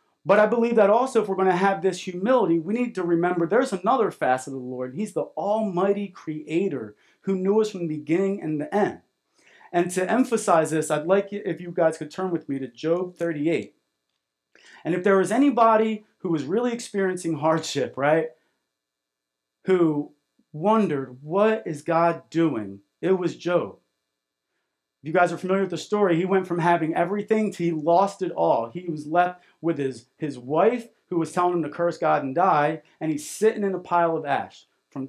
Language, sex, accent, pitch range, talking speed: English, male, American, 150-200 Hz, 195 wpm